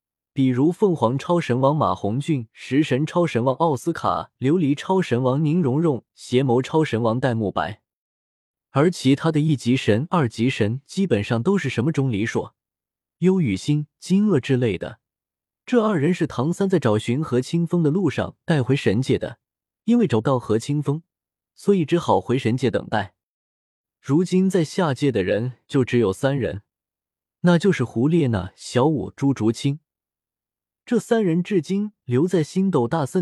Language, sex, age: Chinese, male, 20-39